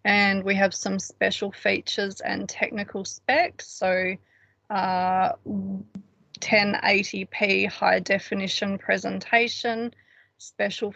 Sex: female